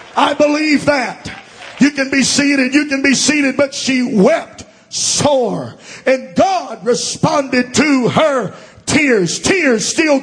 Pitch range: 255-295 Hz